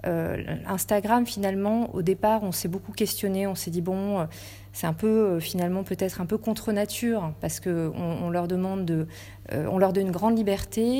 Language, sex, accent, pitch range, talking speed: French, female, French, 160-200 Hz, 185 wpm